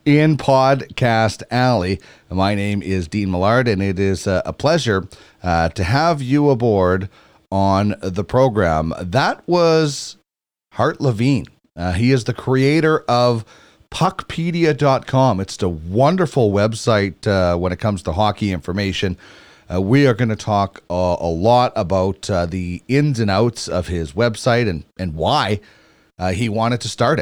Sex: male